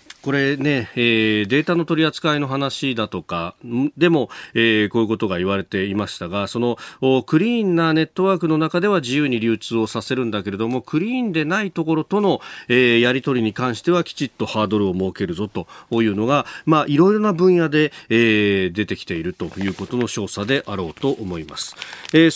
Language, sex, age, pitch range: Japanese, male, 40-59, 110-155 Hz